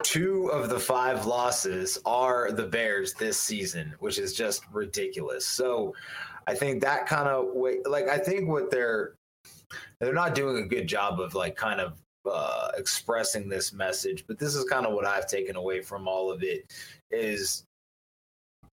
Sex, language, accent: male, English, American